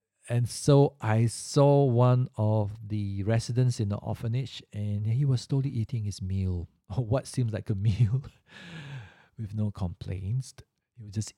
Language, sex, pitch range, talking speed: English, male, 110-145 Hz, 160 wpm